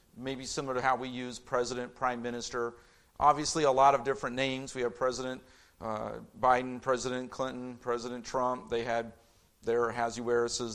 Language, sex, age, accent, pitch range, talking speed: English, male, 50-69, American, 125-160 Hz, 155 wpm